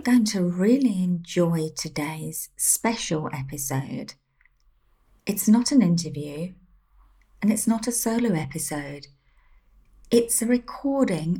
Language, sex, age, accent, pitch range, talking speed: English, female, 30-49, British, 170-220 Hz, 105 wpm